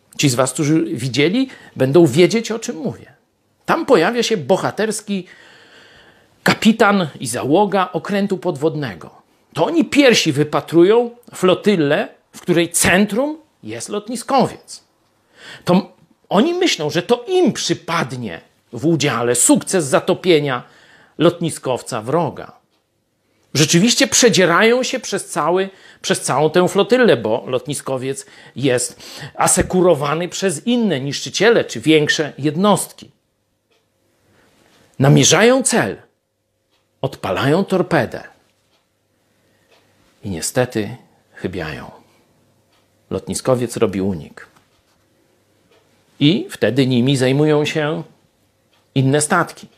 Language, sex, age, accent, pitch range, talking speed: Polish, male, 50-69, native, 130-200 Hz, 95 wpm